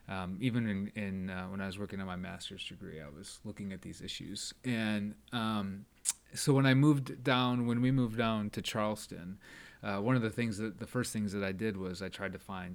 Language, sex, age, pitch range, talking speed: English, male, 30-49, 100-115 Hz, 230 wpm